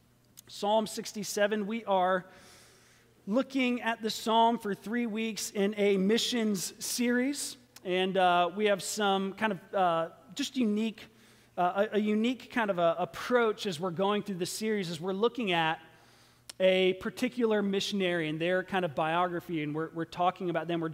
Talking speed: 165 wpm